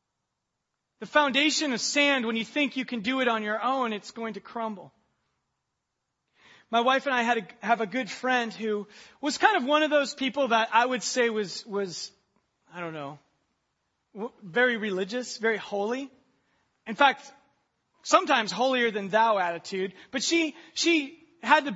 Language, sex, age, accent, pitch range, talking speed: English, male, 30-49, American, 225-280 Hz, 170 wpm